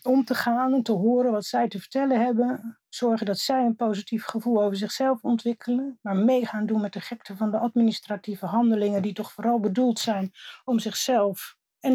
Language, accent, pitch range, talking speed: English, Dutch, 195-230 Hz, 190 wpm